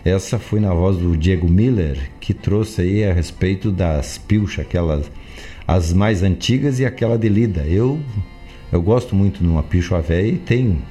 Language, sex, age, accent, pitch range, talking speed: Portuguese, male, 50-69, Brazilian, 85-105 Hz, 175 wpm